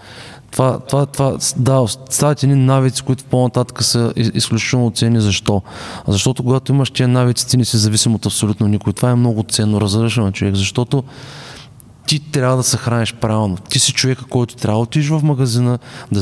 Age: 20-39